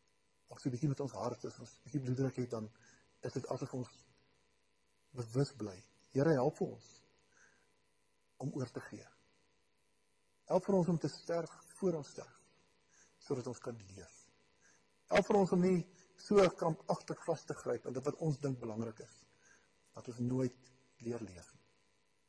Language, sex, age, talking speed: English, male, 50-69, 165 wpm